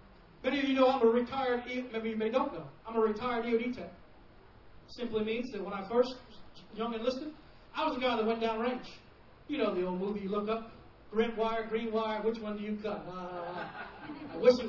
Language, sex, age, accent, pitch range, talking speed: English, male, 40-59, American, 225-345 Hz, 225 wpm